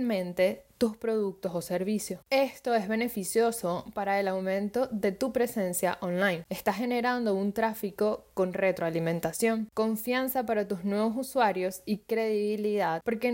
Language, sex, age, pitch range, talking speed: Spanish, female, 10-29, 190-245 Hz, 125 wpm